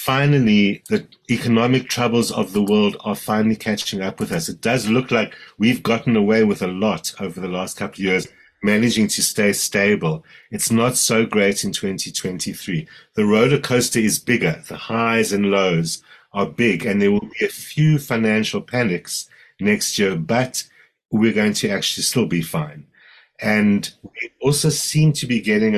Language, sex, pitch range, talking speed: English, male, 105-125 Hz, 175 wpm